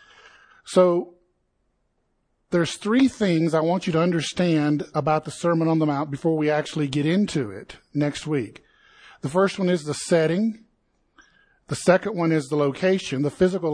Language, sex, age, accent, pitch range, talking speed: English, male, 50-69, American, 145-180 Hz, 160 wpm